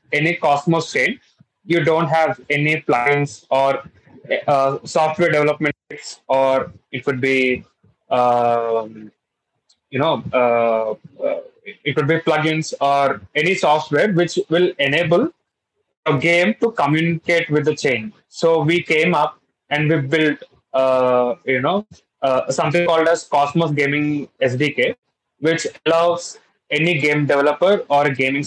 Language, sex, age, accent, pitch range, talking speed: Russian, male, 20-39, Indian, 135-160 Hz, 130 wpm